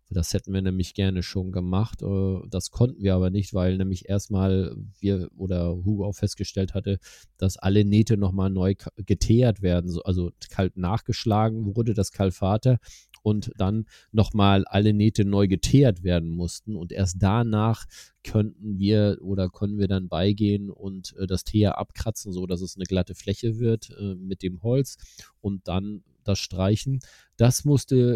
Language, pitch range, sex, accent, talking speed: German, 95-105 Hz, male, German, 155 wpm